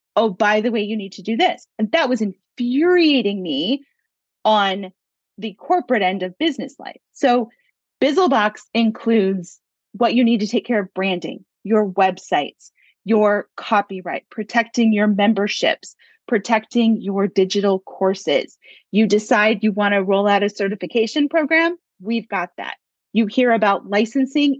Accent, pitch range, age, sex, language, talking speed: American, 210-280 Hz, 30-49, female, English, 145 wpm